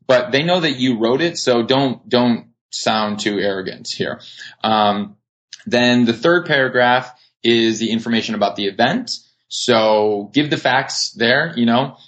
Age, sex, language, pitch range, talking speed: 20-39, male, English, 110-140 Hz, 160 wpm